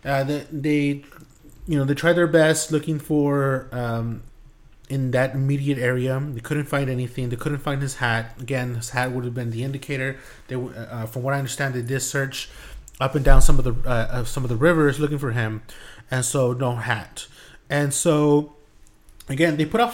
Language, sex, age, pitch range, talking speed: English, male, 30-49, 125-150 Hz, 200 wpm